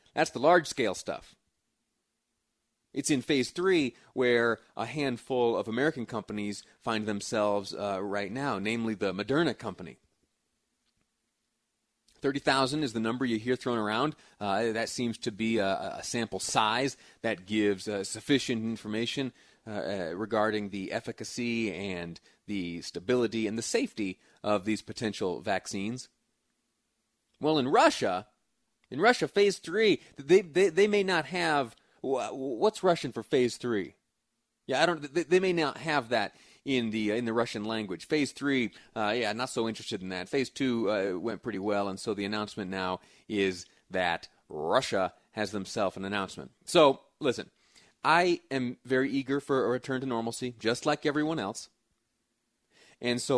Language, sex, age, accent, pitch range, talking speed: English, male, 30-49, American, 105-135 Hz, 155 wpm